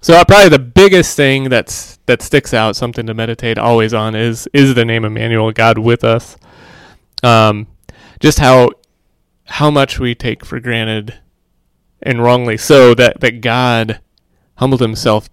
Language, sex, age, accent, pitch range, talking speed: English, male, 30-49, American, 110-130 Hz, 155 wpm